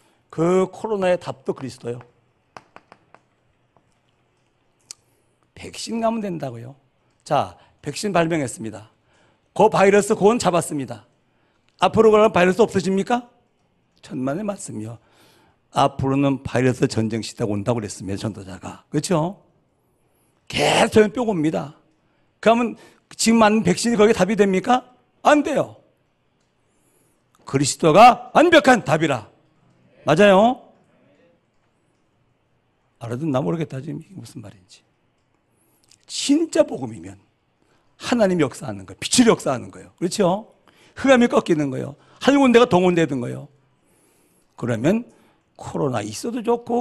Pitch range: 135-225 Hz